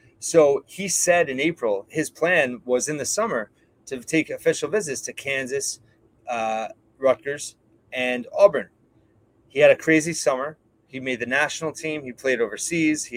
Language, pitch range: English, 125-160 Hz